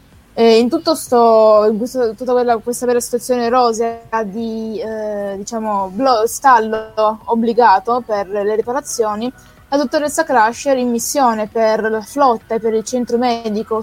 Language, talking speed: Italian, 150 wpm